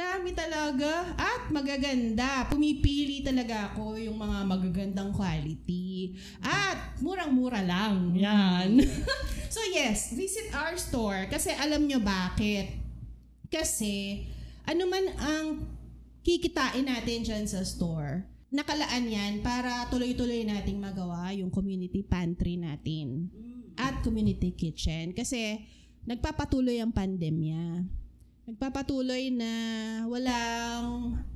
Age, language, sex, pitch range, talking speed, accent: 30-49, Filipino, female, 195-255 Hz, 100 wpm, native